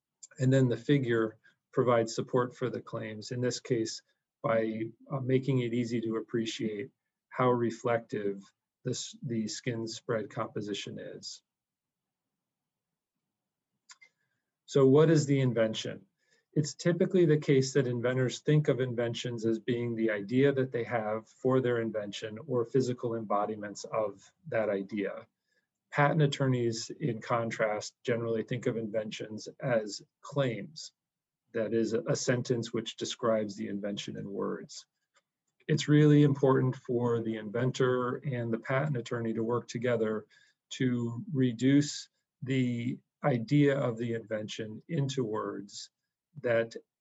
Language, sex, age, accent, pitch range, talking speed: English, male, 40-59, American, 110-135 Hz, 125 wpm